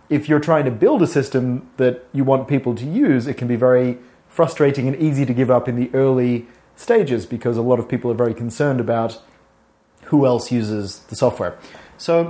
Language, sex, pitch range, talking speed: English, male, 120-145 Hz, 205 wpm